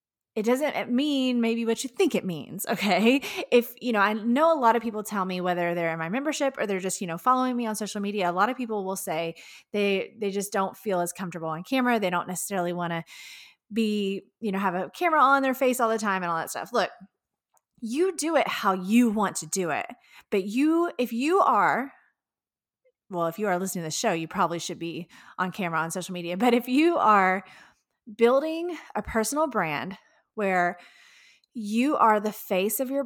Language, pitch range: English, 180-255 Hz